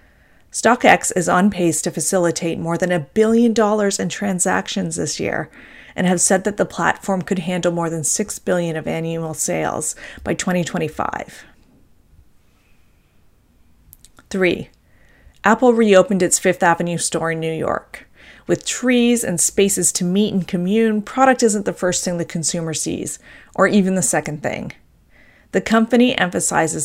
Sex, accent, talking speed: female, American, 145 wpm